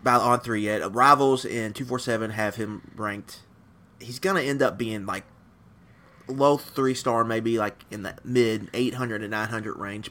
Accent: American